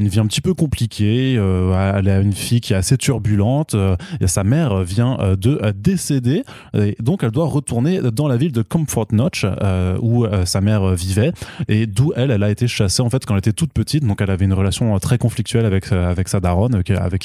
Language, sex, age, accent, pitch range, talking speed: French, male, 20-39, French, 100-135 Hz, 235 wpm